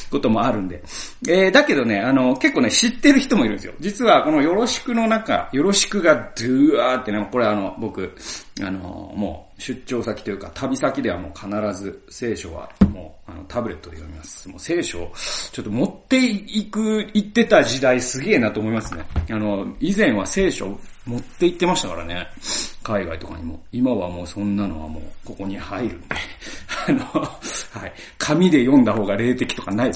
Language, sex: Japanese, male